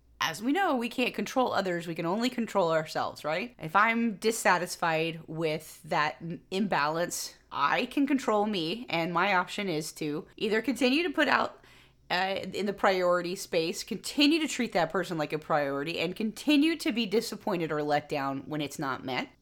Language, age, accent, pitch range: English, 30-49, American, 160-235 Hz